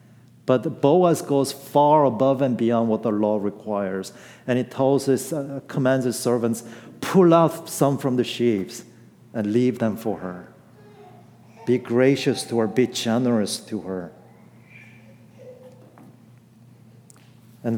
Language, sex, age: English, male, 50-69